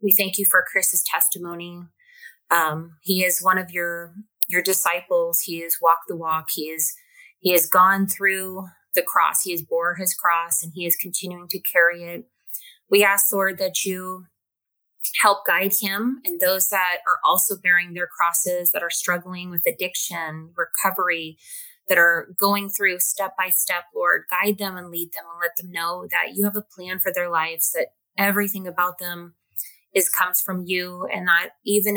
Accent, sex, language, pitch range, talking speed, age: American, female, English, 170-200 Hz, 180 wpm, 20-39